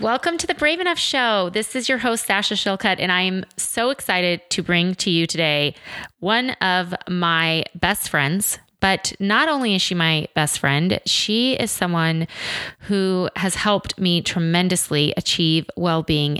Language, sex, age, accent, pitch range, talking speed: English, female, 20-39, American, 165-200 Hz, 165 wpm